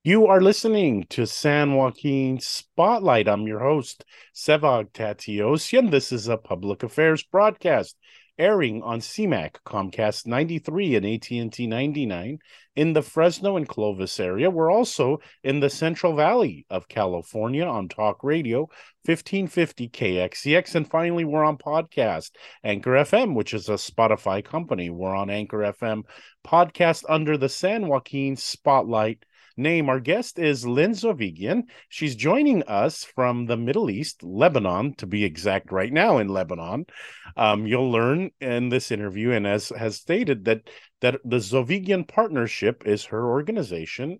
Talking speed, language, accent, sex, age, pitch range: 145 wpm, English, American, male, 40-59, 110-160 Hz